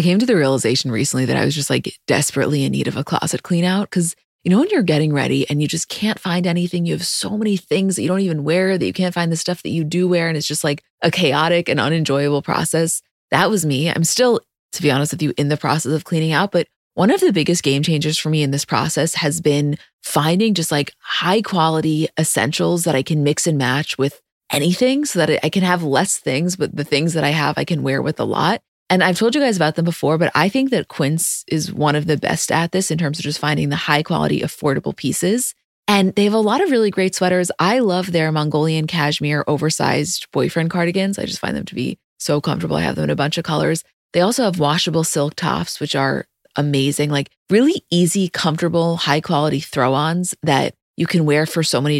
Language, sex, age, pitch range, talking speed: English, female, 20-39, 145-180 Hz, 240 wpm